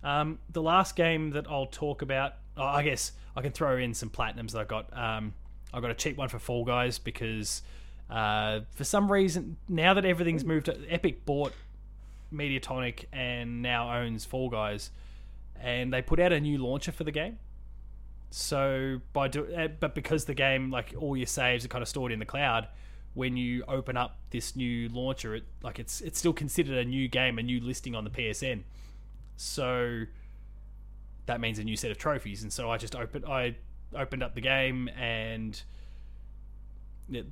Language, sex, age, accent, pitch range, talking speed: English, male, 20-39, Australian, 110-135 Hz, 185 wpm